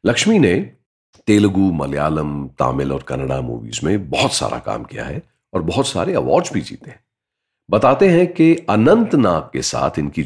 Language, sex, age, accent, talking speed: Hindi, male, 40-59, native, 170 wpm